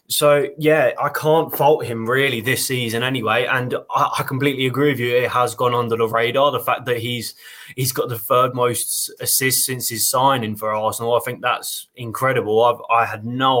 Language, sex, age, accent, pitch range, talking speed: English, male, 20-39, British, 120-135 Hz, 205 wpm